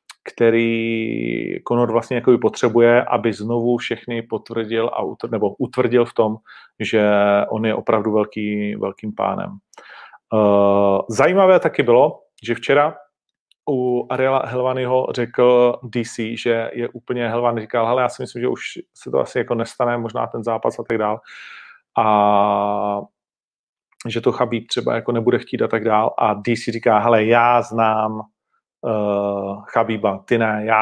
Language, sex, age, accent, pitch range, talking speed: Czech, male, 40-59, native, 110-120 Hz, 150 wpm